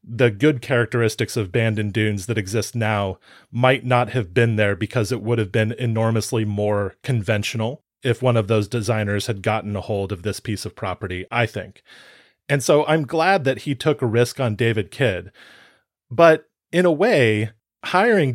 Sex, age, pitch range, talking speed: male, 30-49, 110-135 Hz, 180 wpm